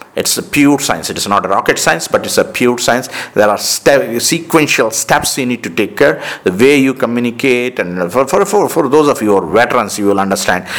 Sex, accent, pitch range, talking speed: male, Indian, 95-125 Hz, 245 wpm